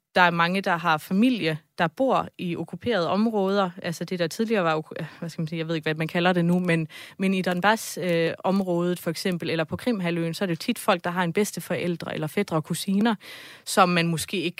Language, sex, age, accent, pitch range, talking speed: Danish, female, 20-39, native, 170-210 Hz, 220 wpm